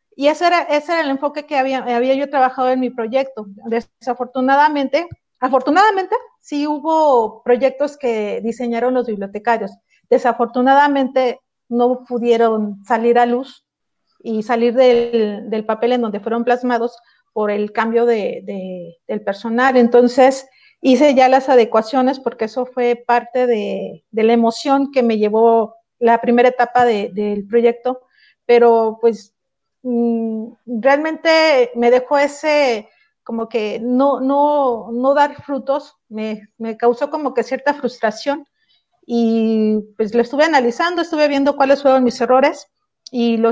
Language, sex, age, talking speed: Spanish, female, 40-59, 140 wpm